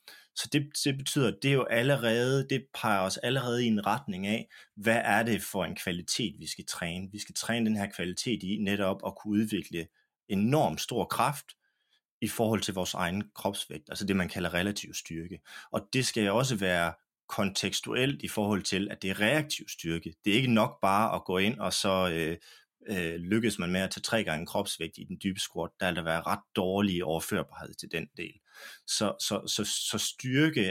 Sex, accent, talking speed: male, native, 200 wpm